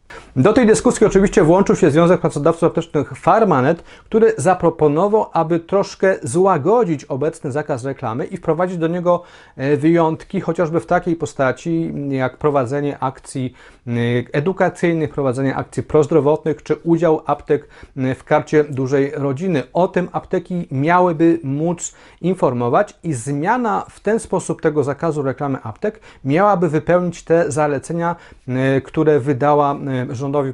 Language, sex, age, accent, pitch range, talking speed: Polish, male, 40-59, native, 140-180 Hz, 125 wpm